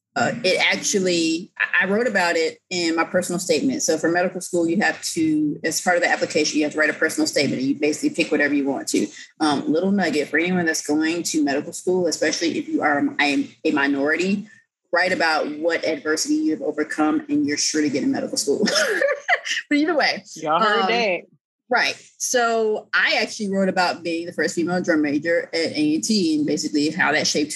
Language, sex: English, female